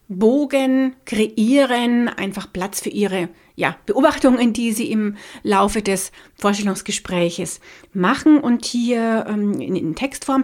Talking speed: 110 wpm